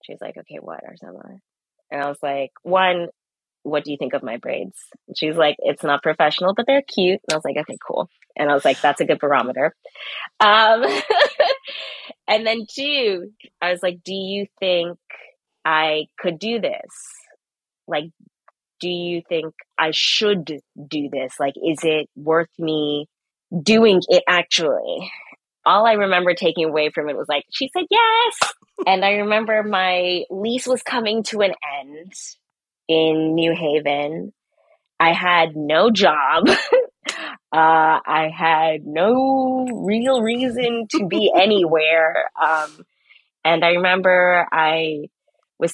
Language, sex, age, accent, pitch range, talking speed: English, female, 20-39, American, 155-215 Hz, 150 wpm